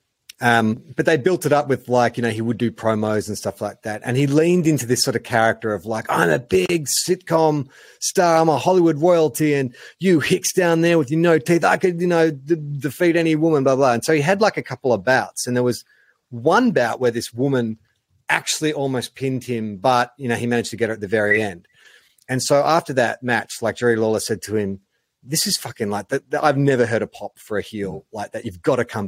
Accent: Australian